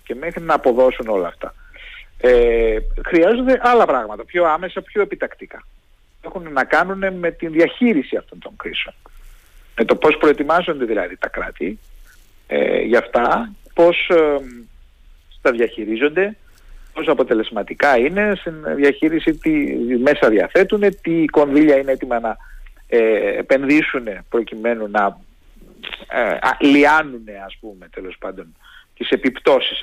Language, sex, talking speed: Greek, male, 130 wpm